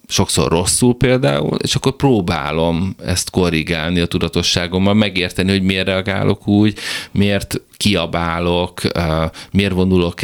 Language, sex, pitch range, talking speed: Hungarian, male, 85-105 Hz, 110 wpm